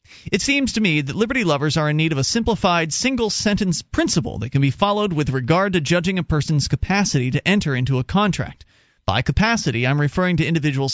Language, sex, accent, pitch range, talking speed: English, male, American, 135-180 Hz, 205 wpm